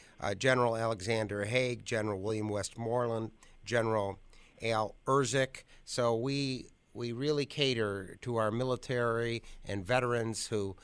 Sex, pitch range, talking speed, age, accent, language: male, 105-125 Hz, 115 wpm, 50-69, American, English